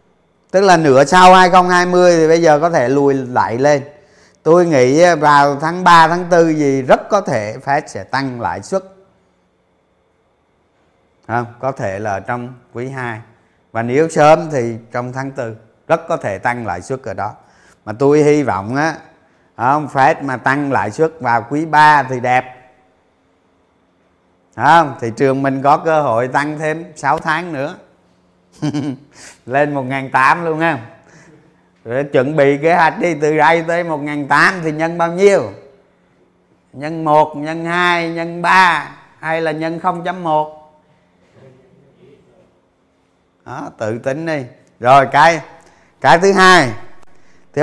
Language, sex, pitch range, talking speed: Vietnamese, male, 125-170 Hz, 140 wpm